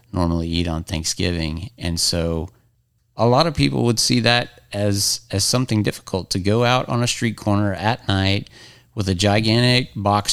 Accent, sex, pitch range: American, male, 90-115 Hz